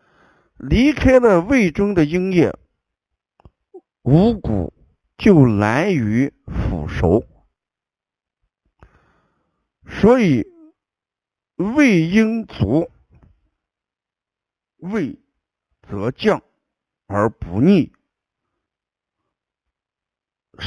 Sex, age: male, 60-79